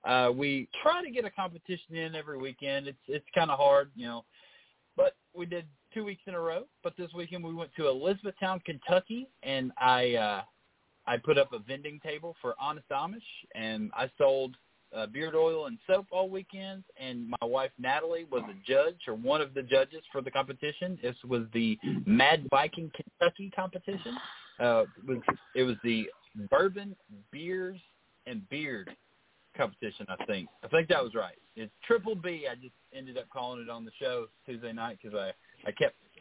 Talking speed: 185 wpm